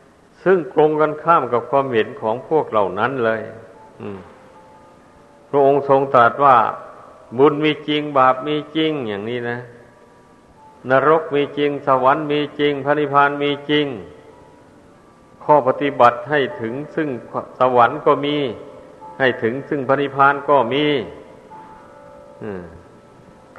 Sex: male